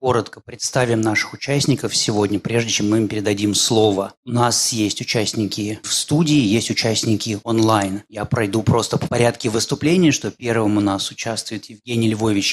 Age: 30-49